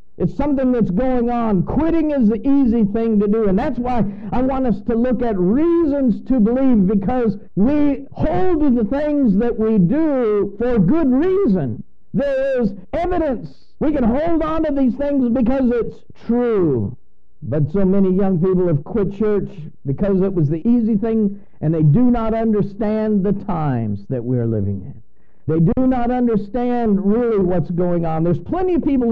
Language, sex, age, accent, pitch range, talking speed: English, male, 50-69, American, 170-245 Hz, 175 wpm